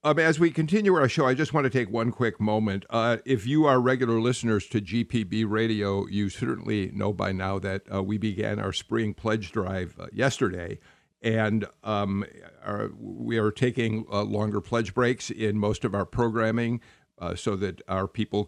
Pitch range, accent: 105-125 Hz, American